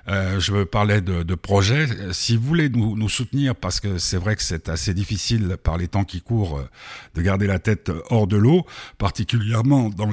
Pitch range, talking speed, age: 90-115 Hz, 200 wpm, 60-79